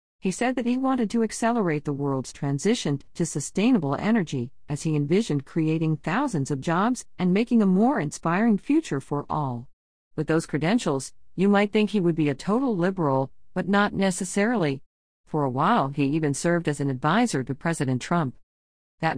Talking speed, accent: 175 wpm, American